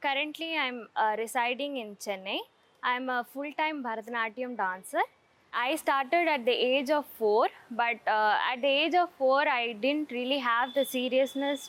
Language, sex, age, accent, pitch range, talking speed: Tamil, female, 20-39, native, 230-285 Hz, 165 wpm